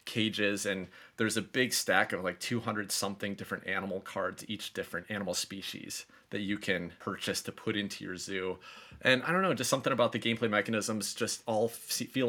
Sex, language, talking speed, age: male, English, 190 wpm, 30-49